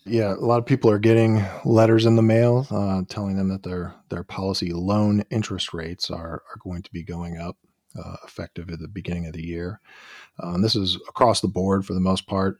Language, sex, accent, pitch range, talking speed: English, male, American, 90-110 Hz, 220 wpm